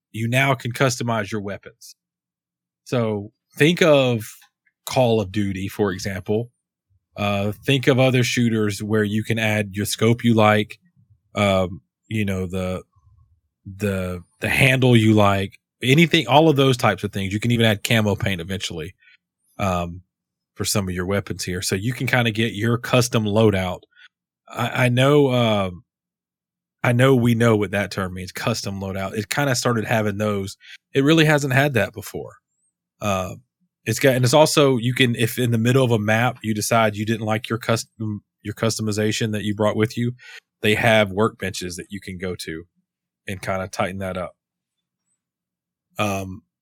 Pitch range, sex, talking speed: 100-125 Hz, male, 175 wpm